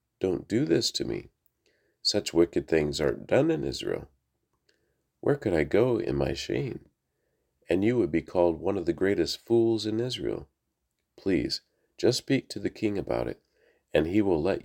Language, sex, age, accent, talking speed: English, male, 40-59, American, 175 wpm